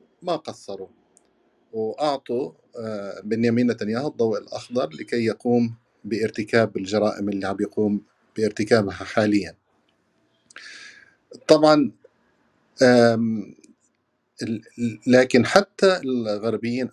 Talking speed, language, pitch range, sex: 80 wpm, Arabic, 110-130 Hz, male